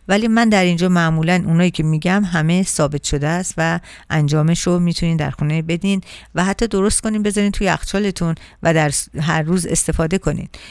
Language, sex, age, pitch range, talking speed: Persian, female, 50-69, 155-185 Hz, 180 wpm